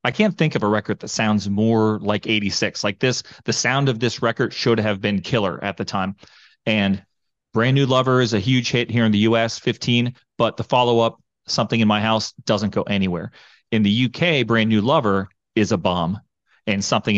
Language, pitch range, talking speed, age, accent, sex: English, 100-120 Hz, 205 wpm, 30-49, American, male